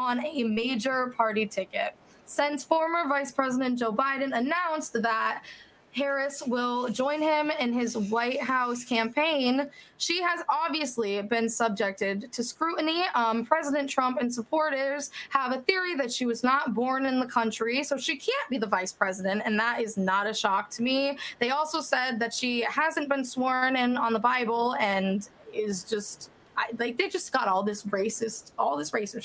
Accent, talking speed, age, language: American, 175 wpm, 20-39, English